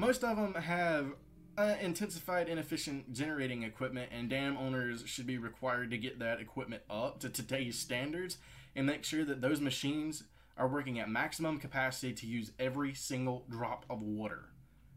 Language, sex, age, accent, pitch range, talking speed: English, male, 20-39, American, 125-155 Hz, 165 wpm